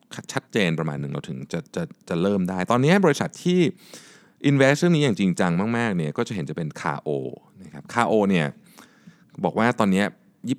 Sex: male